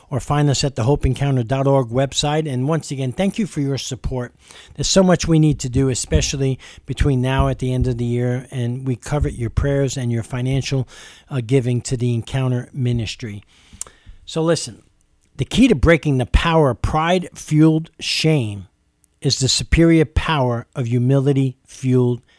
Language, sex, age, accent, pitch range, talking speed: English, male, 50-69, American, 125-165 Hz, 165 wpm